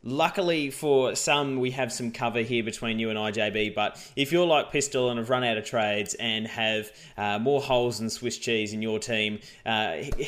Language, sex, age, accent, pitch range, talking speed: English, male, 20-39, Australian, 115-140 Hz, 205 wpm